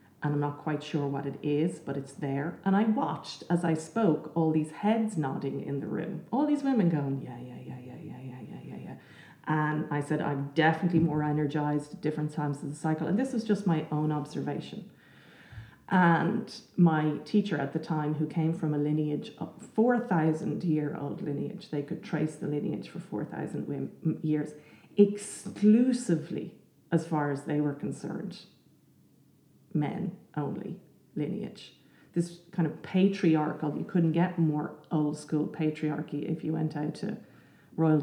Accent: Irish